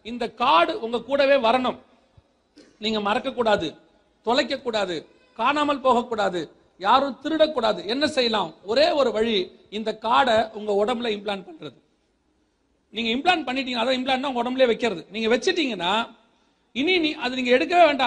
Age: 40-59